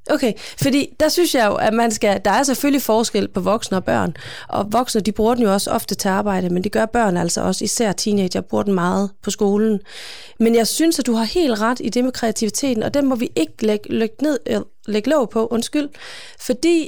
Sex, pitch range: female, 205-255 Hz